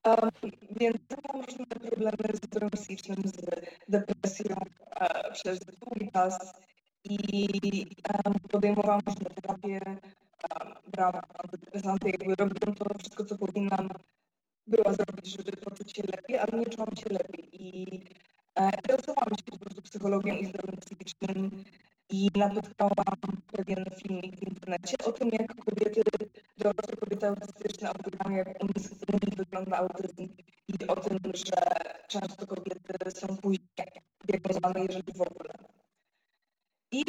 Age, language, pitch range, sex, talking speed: 20-39, Polish, 190-215 Hz, female, 120 wpm